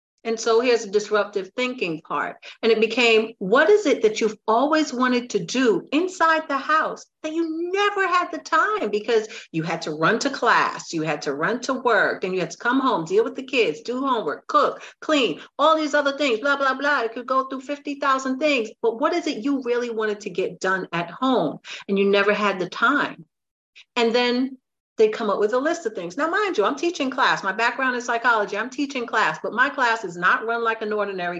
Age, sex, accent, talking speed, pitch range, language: 50-69, female, American, 225 wpm, 205-285 Hz, English